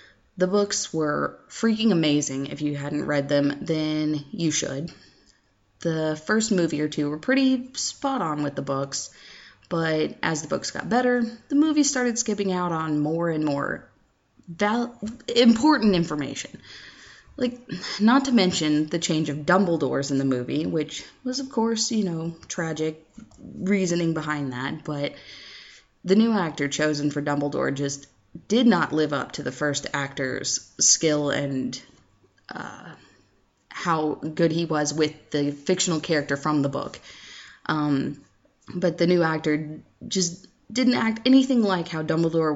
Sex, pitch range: female, 150-205 Hz